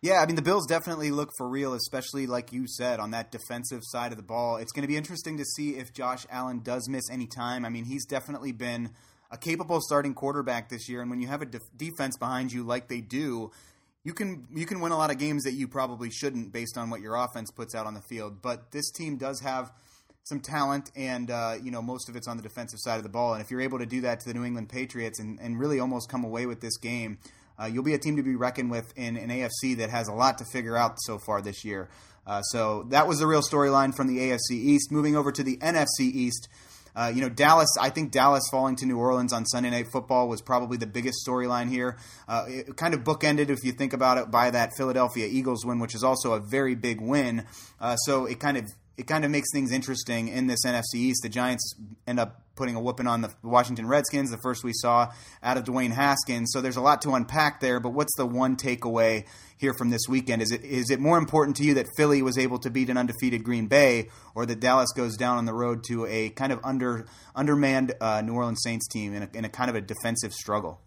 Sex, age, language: male, 30-49, English